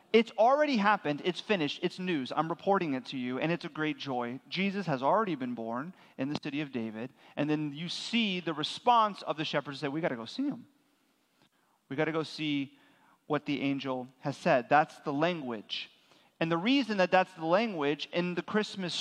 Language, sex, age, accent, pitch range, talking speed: English, male, 30-49, American, 140-190 Hz, 210 wpm